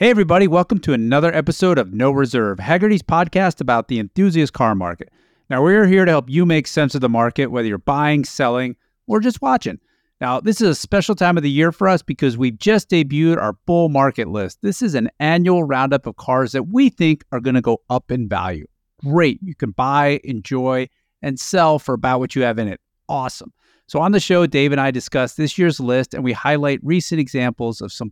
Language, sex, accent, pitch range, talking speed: English, male, American, 120-170 Hz, 220 wpm